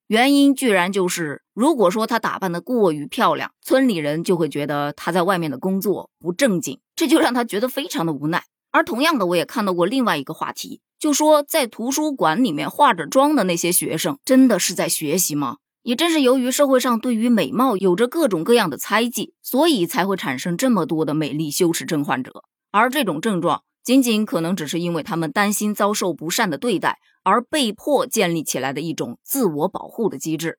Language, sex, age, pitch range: Chinese, female, 20-39, 170-255 Hz